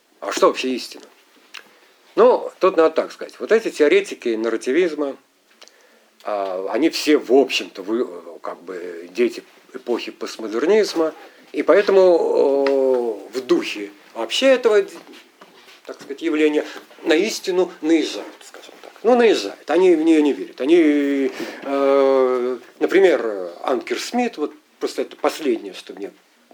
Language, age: English, 50-69